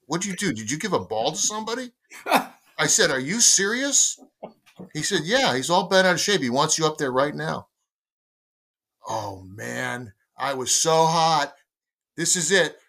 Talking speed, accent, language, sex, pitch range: 190 wpm, American, English, male, 155-225 Hz